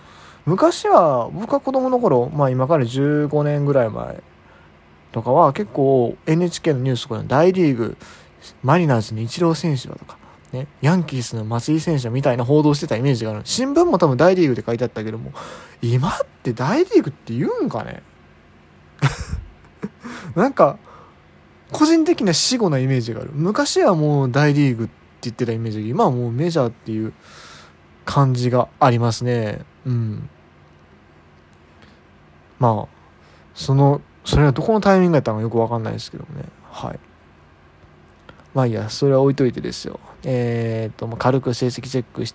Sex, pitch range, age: male, 110-160 Hz, 20-39